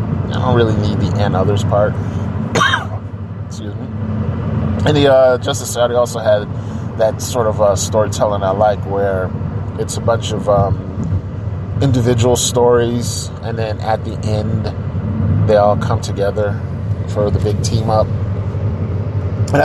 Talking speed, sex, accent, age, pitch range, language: 145 wpm, male, American, 30-49, 100-115 Hz, English